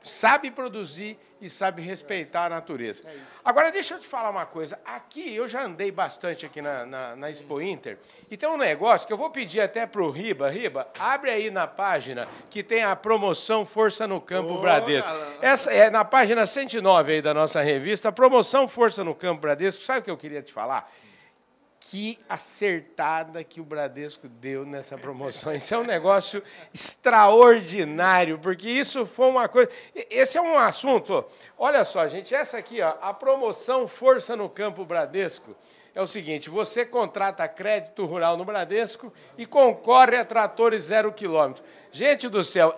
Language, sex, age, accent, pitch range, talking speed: Portuguese, male, 60-79, Brazilian, 180-240 Hz, 170 wpm